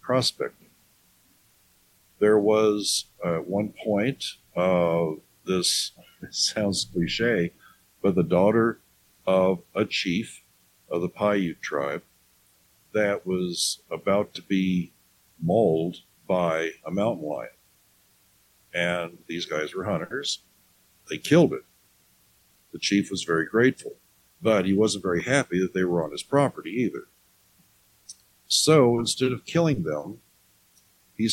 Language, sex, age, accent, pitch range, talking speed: English, male, 60-79, American, 90-115 Hz, 120 wpm